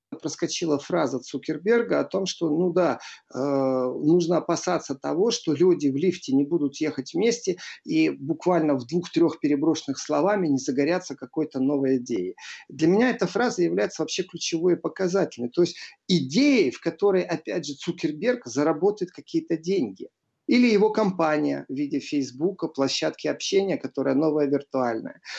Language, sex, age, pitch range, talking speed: Russian, male, 50-69, 150-210 Hz, 145 wpm